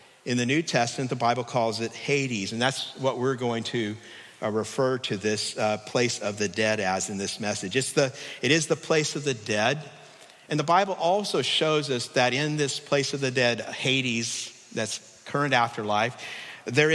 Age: 50-69